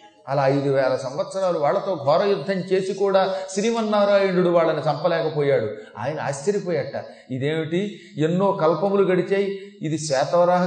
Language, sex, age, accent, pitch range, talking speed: Telugu, male, 40-59, native, 160-215 Hz, 105 wpm